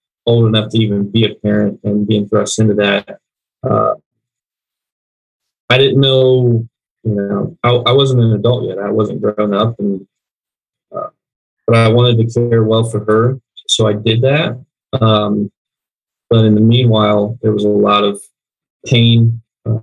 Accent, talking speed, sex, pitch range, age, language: American, 160 wpm, male, 105-125 Hz, 20-39, English